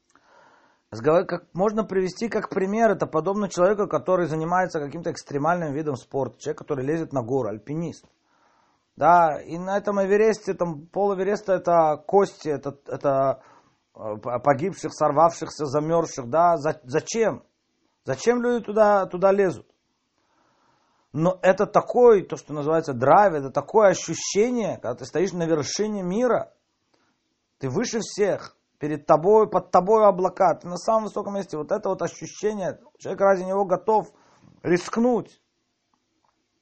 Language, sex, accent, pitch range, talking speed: Russian, male, native, 155-200 Hz, 130 wpm